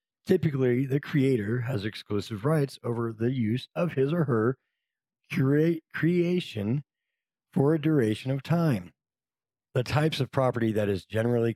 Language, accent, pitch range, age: English, American, 115-155 Hz, 40-59